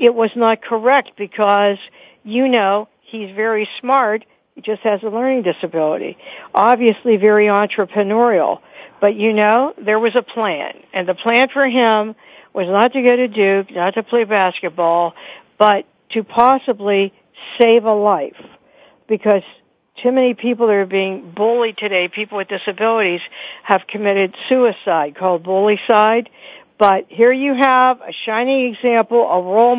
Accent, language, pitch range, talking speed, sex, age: American, English, 195-250 Hz, 145 wpm, female, 60-79